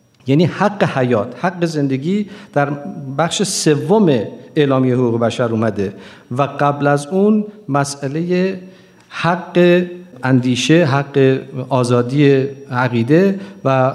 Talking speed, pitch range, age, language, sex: 100 wpm, 125-160 Hz, 50-69, Persian, male